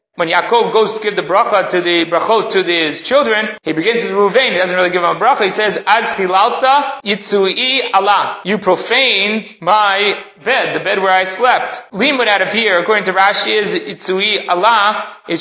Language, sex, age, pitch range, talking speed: English, male, 30-49, 180-220 Hz, 170 wpm